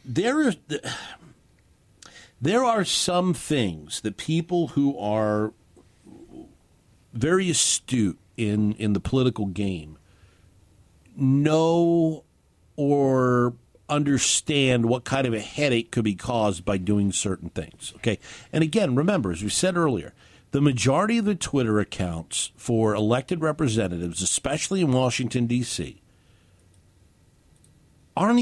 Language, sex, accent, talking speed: English, male, American, 110 wpm